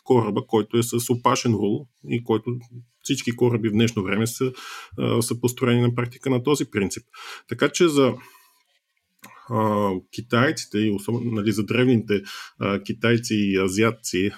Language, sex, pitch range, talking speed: Bulgarian, male, 110-130 Hz, 140 wpm